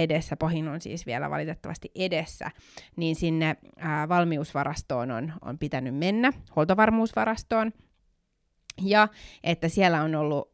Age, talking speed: 20-39, 120 wpm